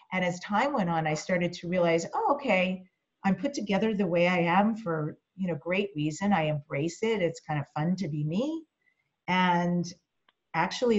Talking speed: 190 wpm